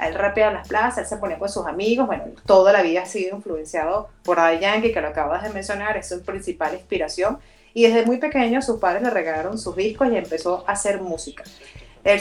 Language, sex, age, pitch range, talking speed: Spanish, female, 30-49, 180-230 Hz, 220 wpm